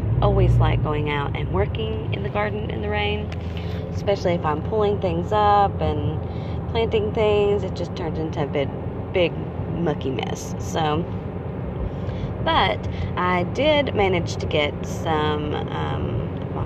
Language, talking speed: English, 140 wpm